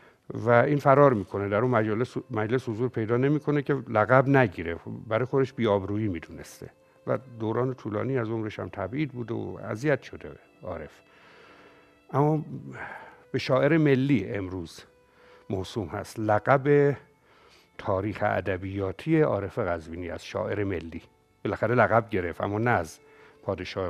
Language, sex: Persian, male